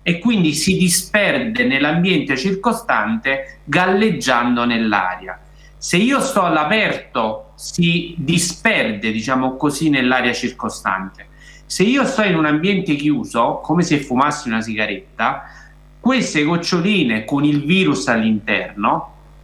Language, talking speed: Italian, 110 wpm